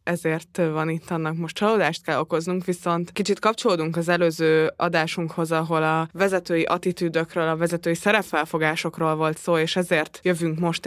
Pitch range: 160-180 Hz